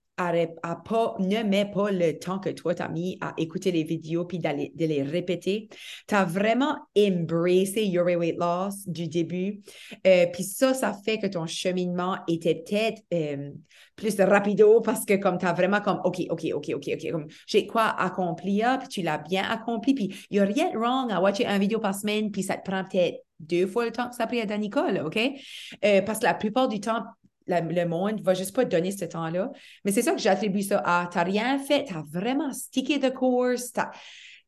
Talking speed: 220 wpm